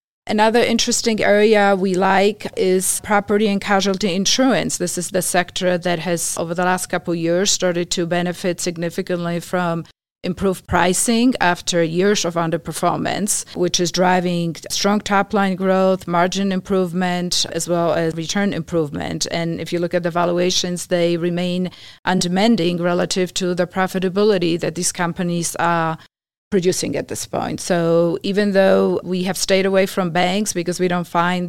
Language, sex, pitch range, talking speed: English, female, 170-190 Hz, 155 wpm